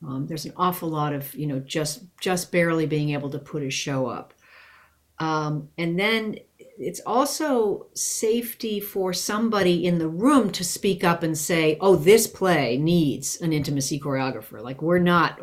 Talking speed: 170 wpm